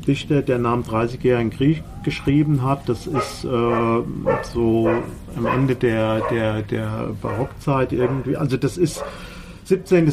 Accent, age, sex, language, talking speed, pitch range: German, 50-69, male, German, 140 wpm, 115-145 Hz